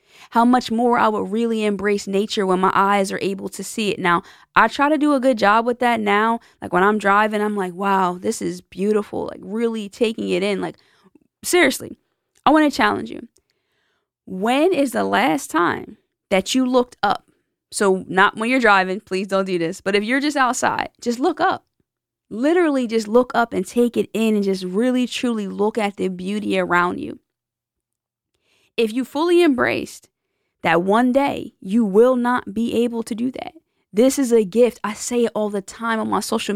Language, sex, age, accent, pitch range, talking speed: English, female, 20-39, American, 195-240 Hz, 200 wpm